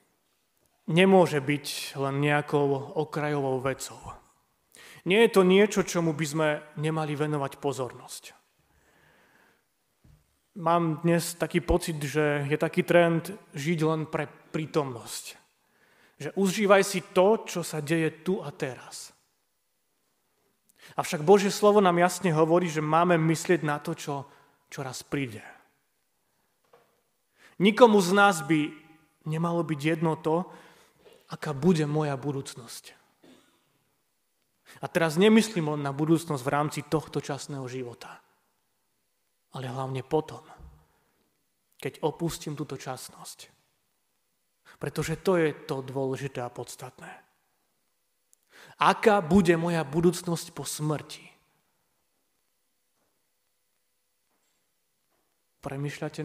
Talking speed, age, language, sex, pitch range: 100 wpm, 30-49, Slovak, male, 140-170 Hz